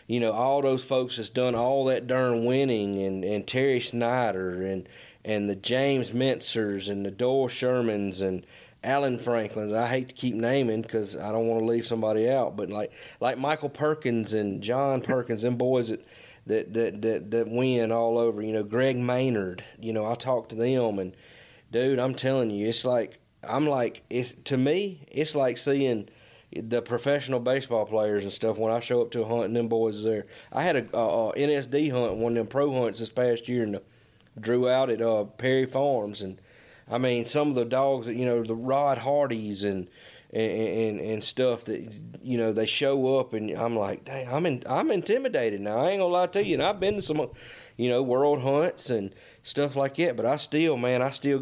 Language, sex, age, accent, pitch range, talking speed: English, male, 30-49, American, 110-130 Hz, 210 wpm